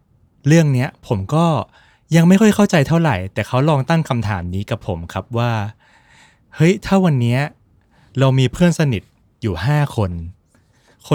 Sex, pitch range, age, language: male, 105-140 Hz, 20-39, Thai